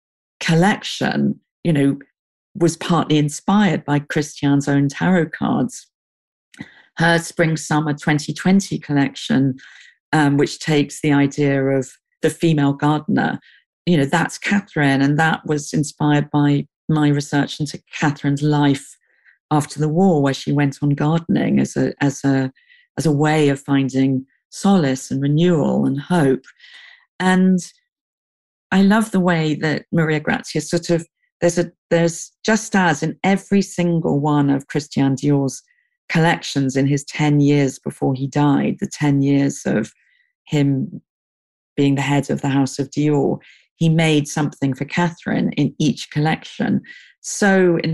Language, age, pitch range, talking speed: English, 50-69, 140-175 Hz, 145 wpm